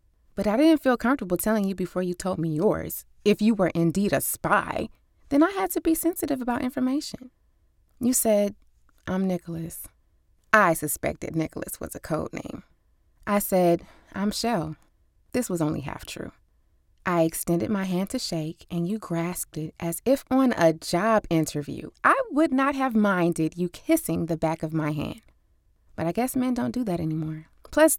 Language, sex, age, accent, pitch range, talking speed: English, female, 20-39, American, 160-220 Hz, 180 wpm